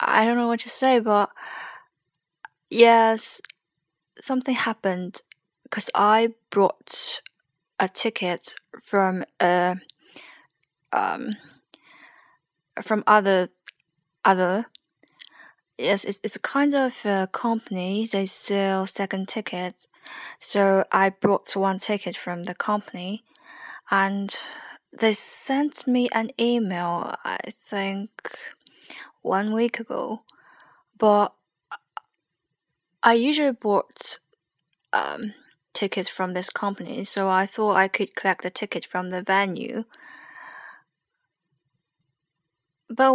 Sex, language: female, Chinese